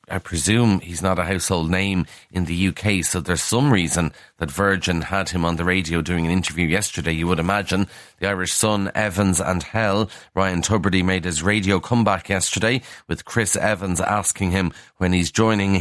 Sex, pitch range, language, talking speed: male, 90-105 Hz, English, 185 wpm